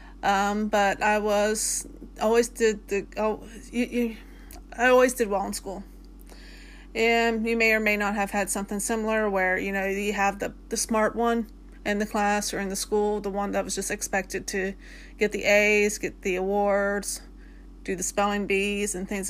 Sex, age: female, 30-49